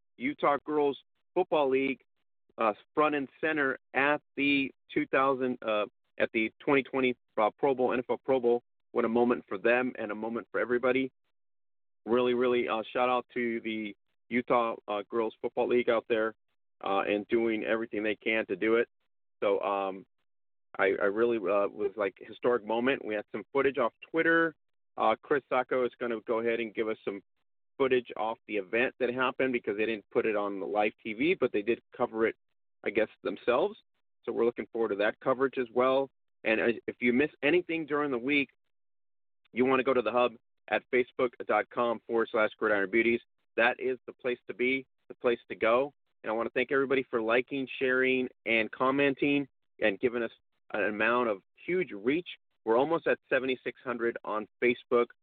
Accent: American